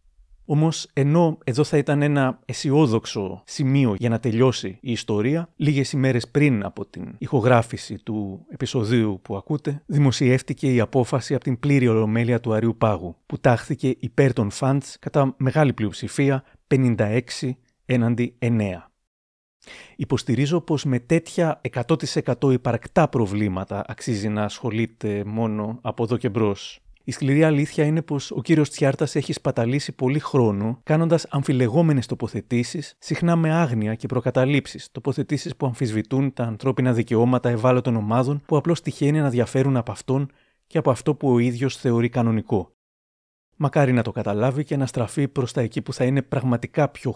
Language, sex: Greek, male